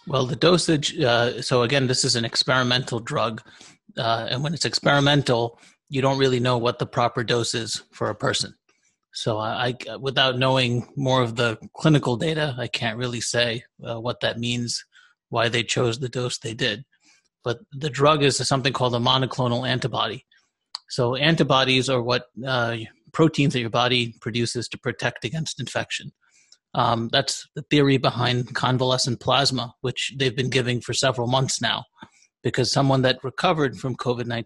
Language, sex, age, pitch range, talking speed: English, male, 30-49, 120-135 Hz, 165 wpm